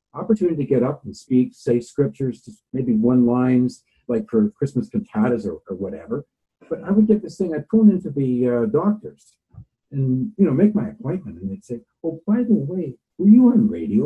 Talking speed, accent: 200 wpm, American